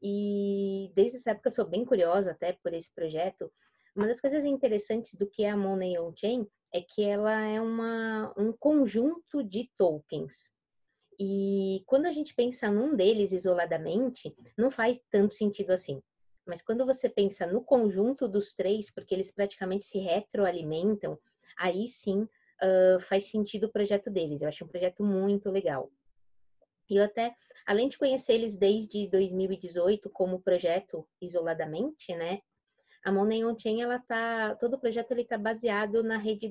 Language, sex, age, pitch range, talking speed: Portuguese, female, 20-39, 180-225 Hz, 155 wpm